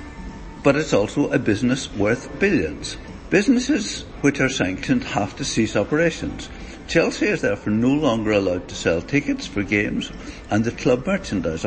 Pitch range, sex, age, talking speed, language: 100-140 Hz, male, 60-79, 155 wpm, English